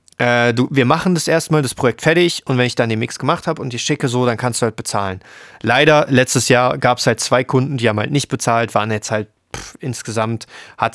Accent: German